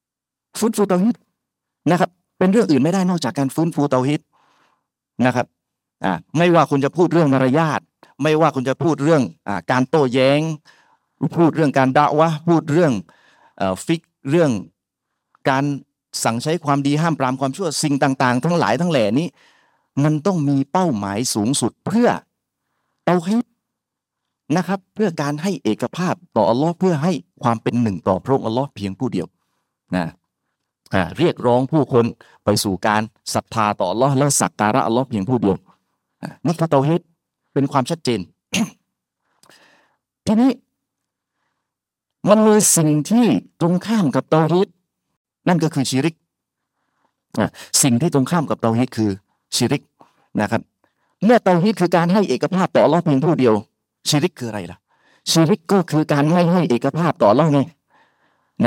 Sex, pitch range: male, 130-175 Hz